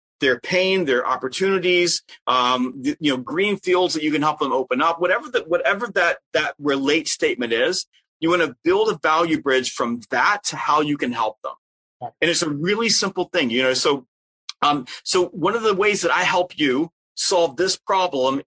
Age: 30-49